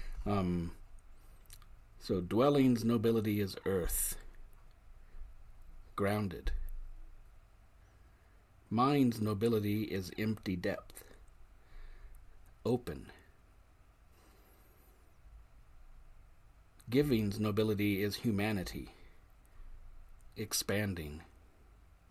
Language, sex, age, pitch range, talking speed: English, male, 50-69, 85-105 Hz, 50 wpm